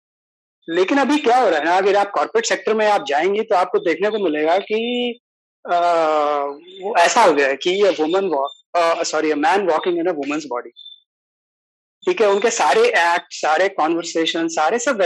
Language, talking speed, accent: English, 125 wpm, Indian